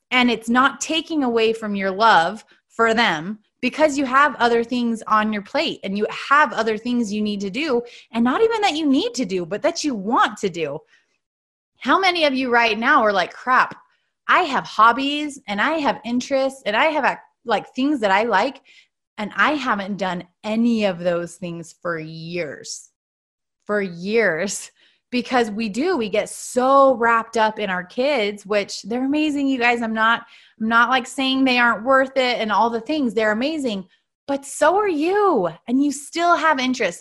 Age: 20-39